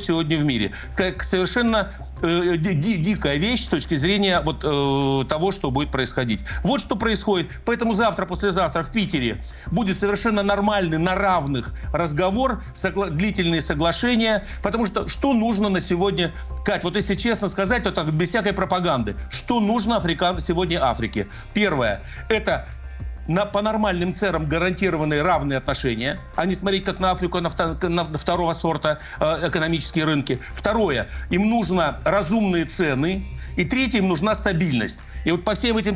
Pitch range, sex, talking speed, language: 150-200 Hz, male, 145 wpm, Russian